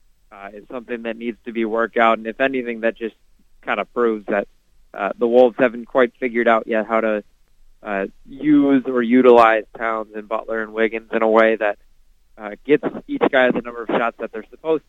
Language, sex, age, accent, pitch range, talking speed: English, male, 20-39, American, 110-130 Hz, 210 wpm